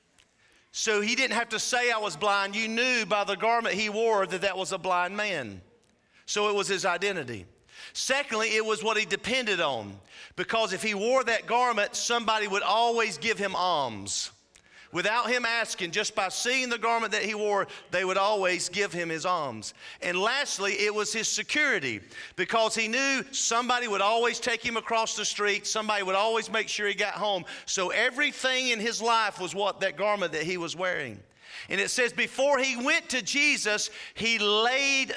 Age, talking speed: 40-59, 190 wpm